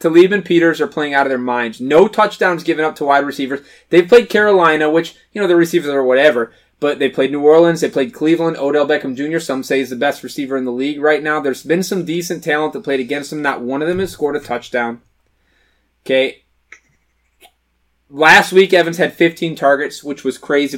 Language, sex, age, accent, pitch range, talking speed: English, male, 20-39, American, 130-165 Hz, 215 wpm